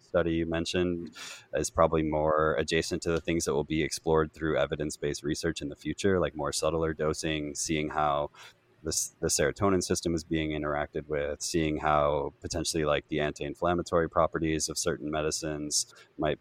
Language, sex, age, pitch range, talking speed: English, male, 20-39, 75-90 Hz, 160 wpm